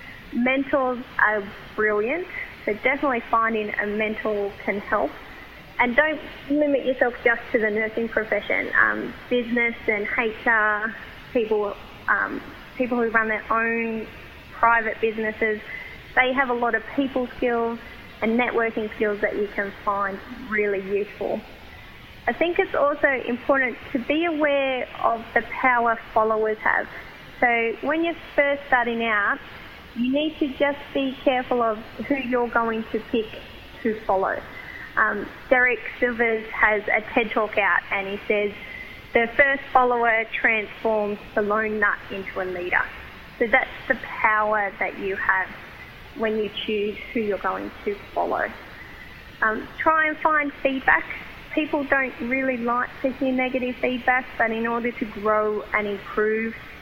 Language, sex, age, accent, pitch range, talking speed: English, female, 20-39, Australian, 215-260 Hz, 145 wpm